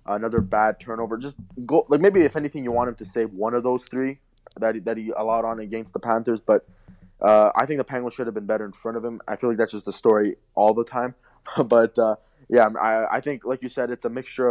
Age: 20-39